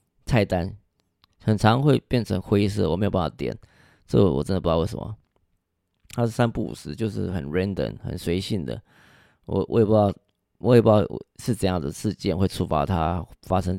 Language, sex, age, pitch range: Chinese, male, 20-39, 85-110 Hz